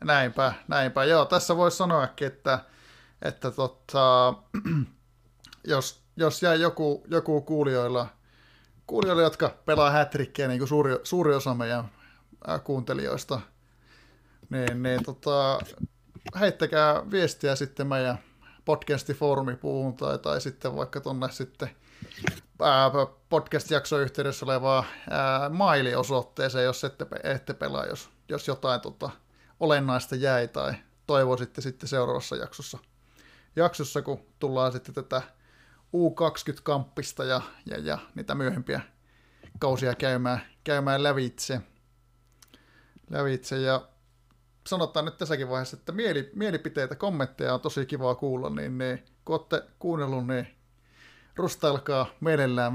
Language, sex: Finnish, male